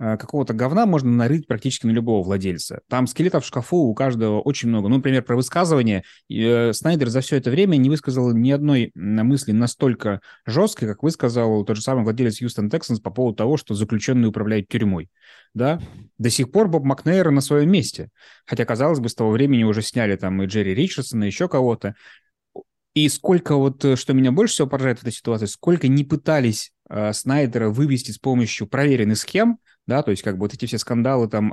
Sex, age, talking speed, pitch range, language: male, 20-39, 190 wpm, 110-140 Hz, Russian